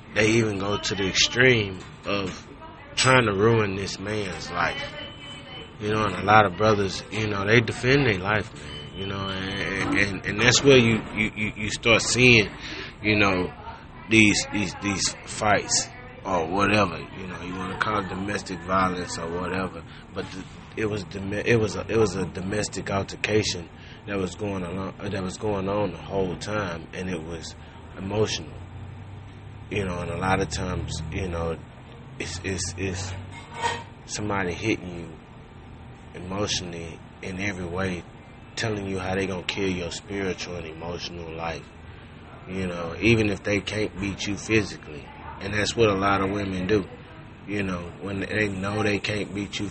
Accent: American